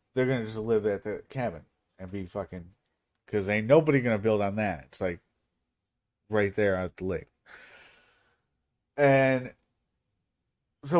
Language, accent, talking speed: English, American, 155 wpm